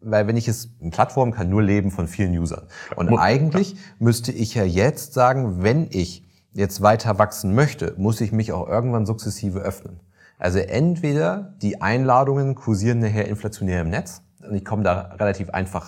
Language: German